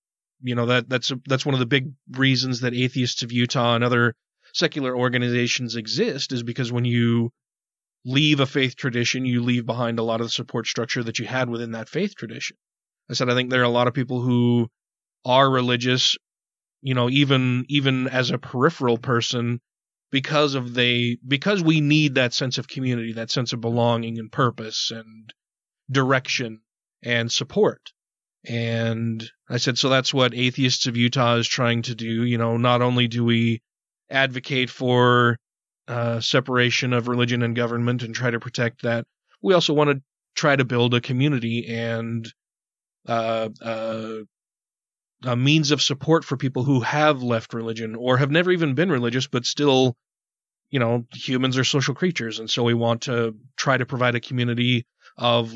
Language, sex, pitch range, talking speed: English, male, 120-135 Hz, 175 wpm